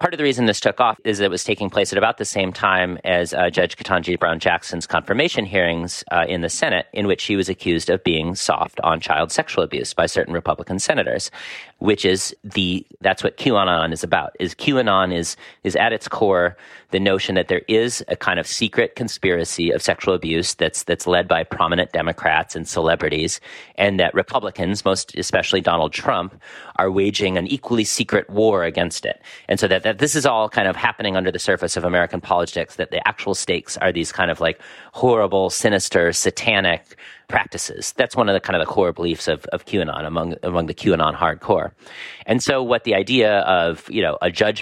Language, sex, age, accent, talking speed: English, male, 40-59, American, 205 wpm